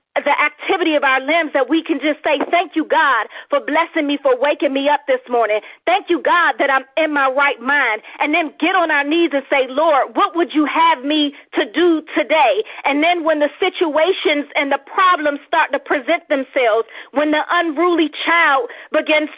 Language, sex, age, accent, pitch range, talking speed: English, female, 40-59, American, 290-340 Hz, 200 wpm